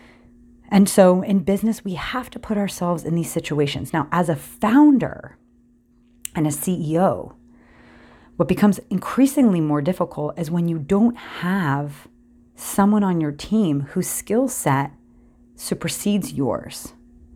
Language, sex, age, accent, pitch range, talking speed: English, female, 30-49, American, 140-210 Hz, 130 wpm